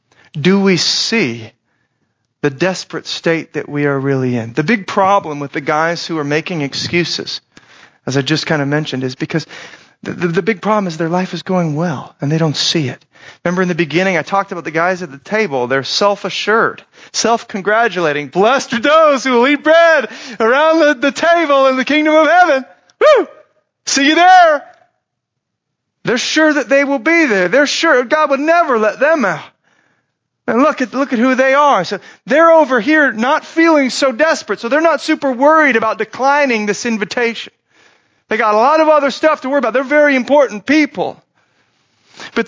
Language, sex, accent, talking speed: English, male, American, 190 wpm